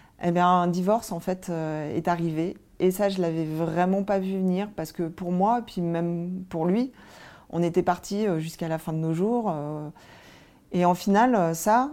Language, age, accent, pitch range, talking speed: French, 40-59, French, 170-200 Hz, 205 wpm